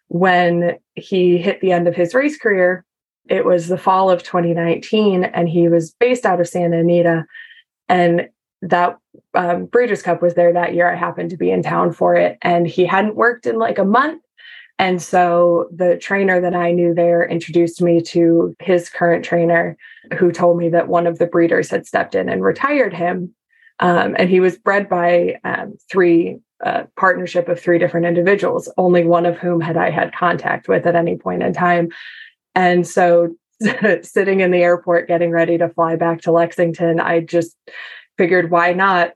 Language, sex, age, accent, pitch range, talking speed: English, female, 20-39, American, 170-180 Hz, 185 wpm